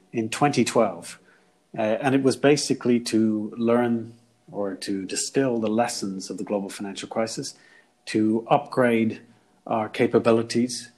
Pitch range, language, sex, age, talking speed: 105-120 Hz, English, male, 40-59, 125 wpm